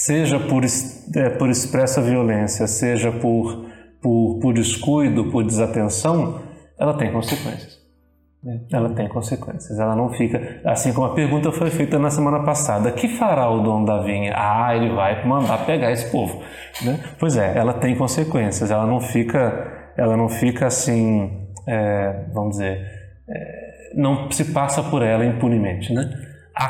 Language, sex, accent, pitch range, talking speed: Portuguese, male, Brazilian, 105-135 Hz, 155 wpm